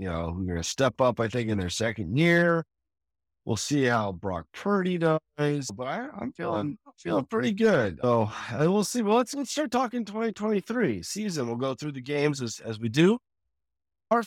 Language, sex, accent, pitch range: English, male, American, 105-155 Hz